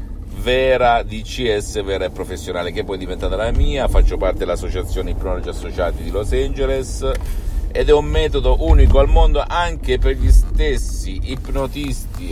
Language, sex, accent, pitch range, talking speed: Italian, male, native, 85-115 Hz, 150 wpm